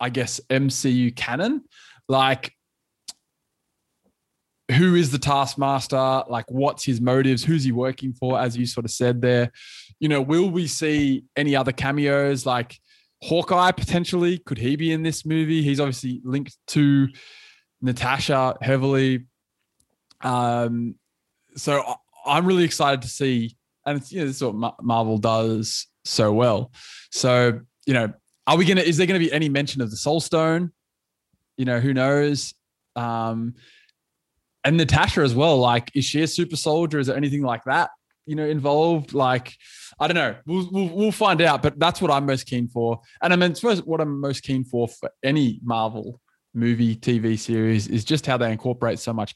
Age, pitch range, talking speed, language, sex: 20-39, 120-155 Hz, 175 wpm, English, male